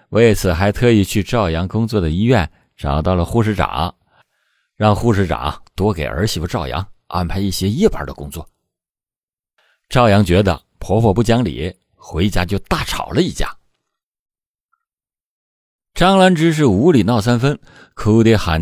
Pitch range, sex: 85-120 Hz, male